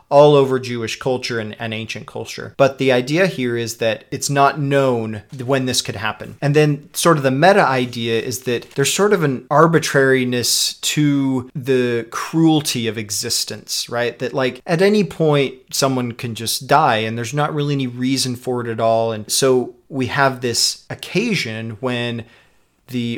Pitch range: 115-140 Hz